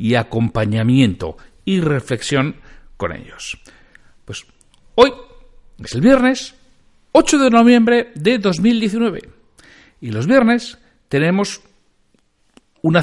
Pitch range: 115-180 Hz